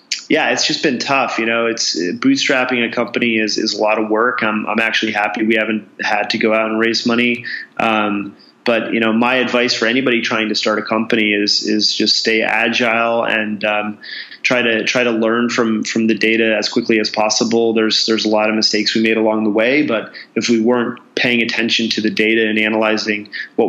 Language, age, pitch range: English, 20-39, 110-115 Hz